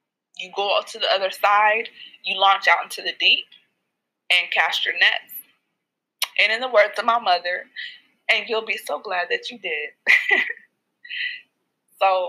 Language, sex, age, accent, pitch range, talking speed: English, female, 20-39, American, 190-240 Hz, 155 wpm